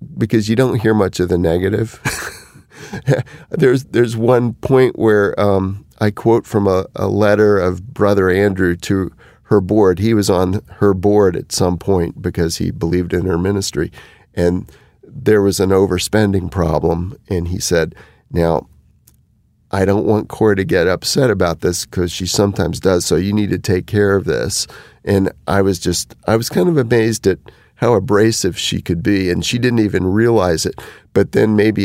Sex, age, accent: male, 40-59, American